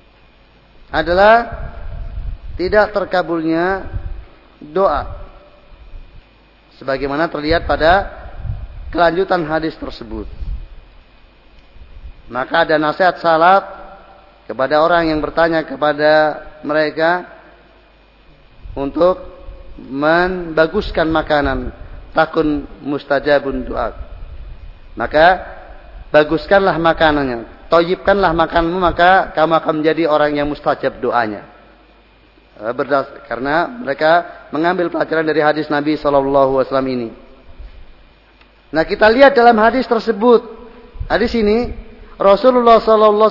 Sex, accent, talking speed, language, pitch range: male, native, 80 wpm, Indonesian, 145-215 Hz